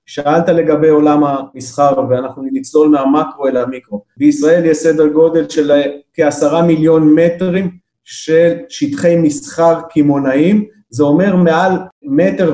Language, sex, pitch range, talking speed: Hebrew, male, 150-175 Hz, 120 wpm